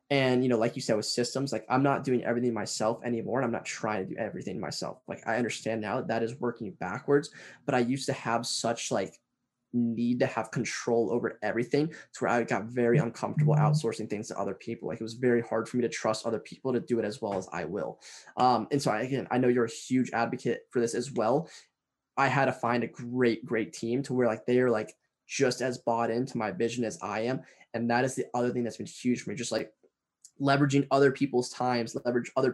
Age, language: 10-29, English